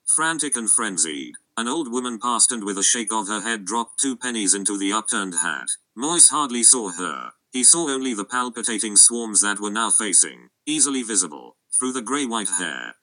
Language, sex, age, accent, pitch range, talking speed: English, male, 40-59, British, 105-125 Hz, 190 wpm